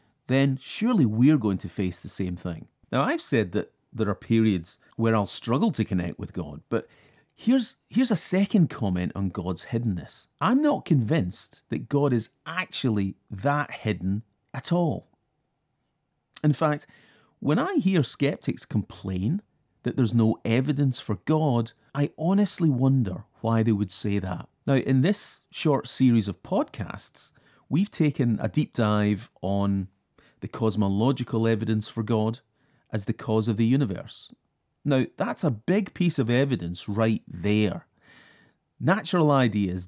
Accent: British